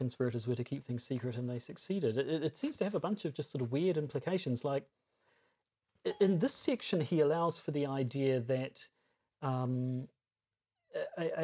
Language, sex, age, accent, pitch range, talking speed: English, male, 40-59, British, 130-170 Hz, 185 wpm